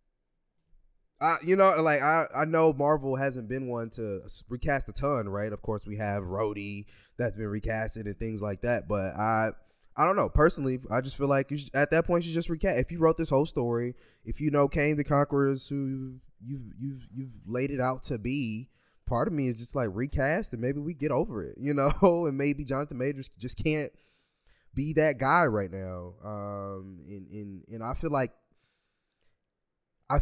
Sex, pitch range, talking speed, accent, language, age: male, 105-145 Hz, 200 wpm, American, English, 20-39